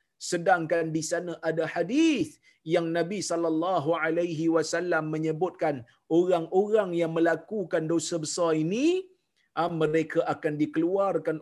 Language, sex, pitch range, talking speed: Malayalam, male, 145-185 Hz, 105 wpm